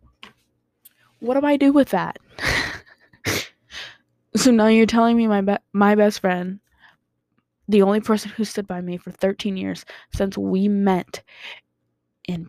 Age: 10-29